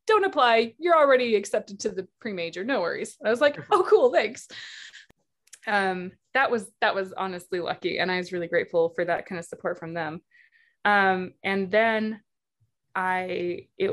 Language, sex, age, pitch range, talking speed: English, female, 20-39, 180-260 Hz, 170 wpm